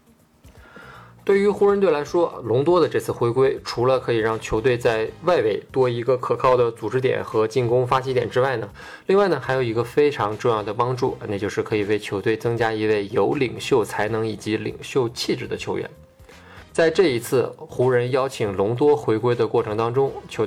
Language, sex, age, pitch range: Chinese, male, 20-39, 110-135 Hz